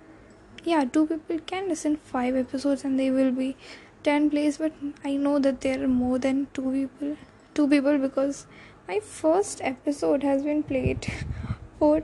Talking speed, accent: 165 wpm, Indian